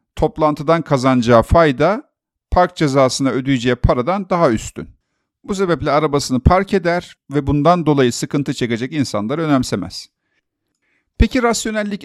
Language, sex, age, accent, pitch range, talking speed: Turkish, male, 50-69, native, 140-185 Hz, 115 wpm